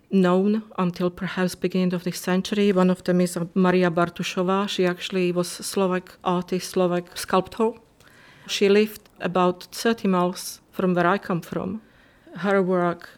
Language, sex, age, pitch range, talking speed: English, female, 40-59, 180-200 Hz, 150 wpm